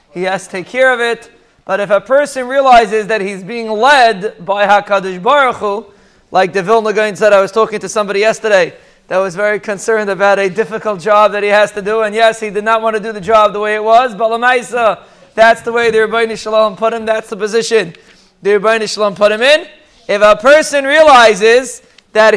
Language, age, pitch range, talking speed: English, 20-39, 220-270 Hz, 215 wpm